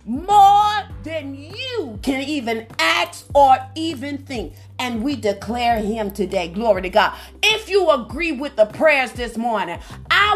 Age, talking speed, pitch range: 40-59, 150 wpm, 280-380 Hz